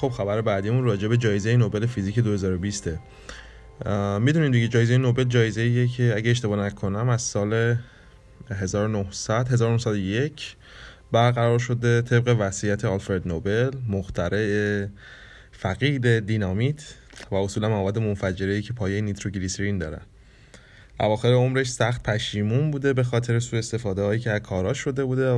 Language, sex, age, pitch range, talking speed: Persian, male, 20-39, 100-120 Hz, 130 wpm